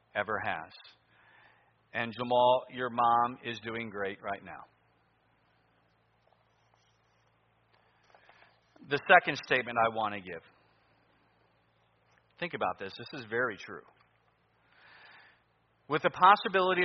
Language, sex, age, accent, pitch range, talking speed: English, male, 40-59, American, 115-160 Hz, 100 wpm